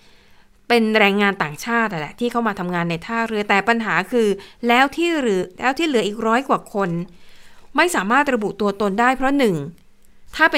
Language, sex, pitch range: Thai, female, 200-245 Hz